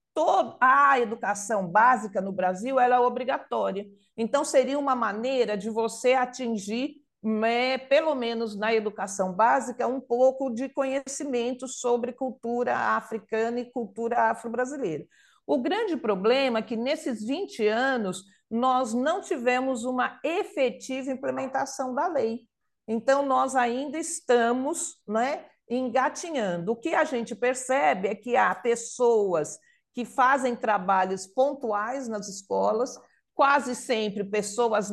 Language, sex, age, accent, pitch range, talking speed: Portuguese, female, 50-69, Brazilian, 215-265 Hz, 120 wpm